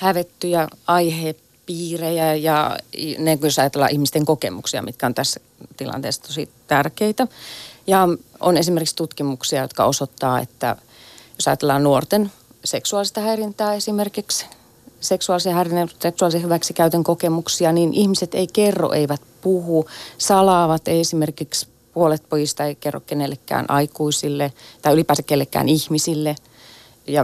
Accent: native